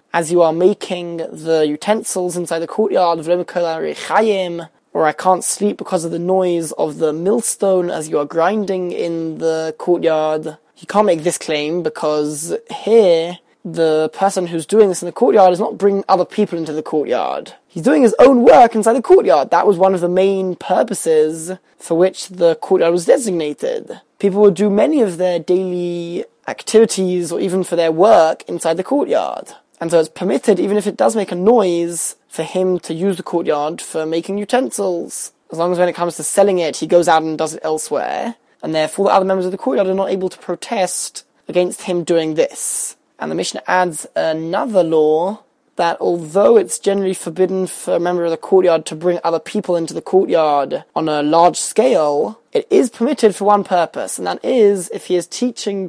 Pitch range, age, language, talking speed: 165-200 Hz, 20-39, English, 195 wpm